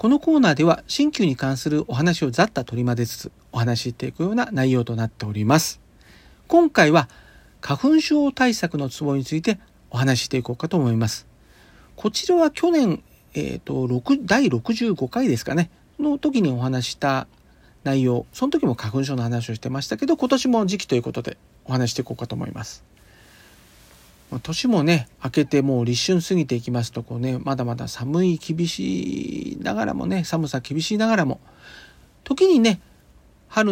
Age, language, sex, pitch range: 40-59, Japanese, male, 120-195 Hz